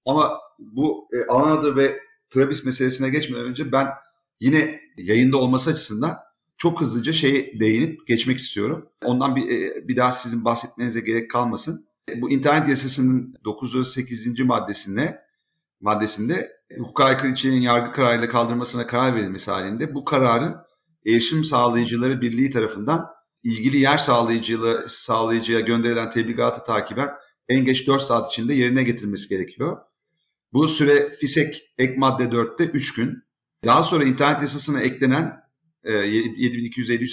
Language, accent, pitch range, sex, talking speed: Turkish, native, 115-135 Hz, male, 130 wpm